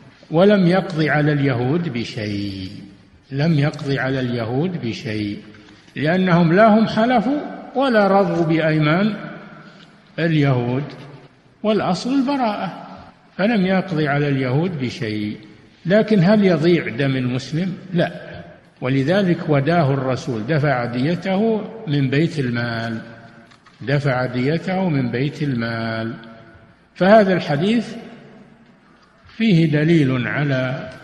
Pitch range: 135-190 Hz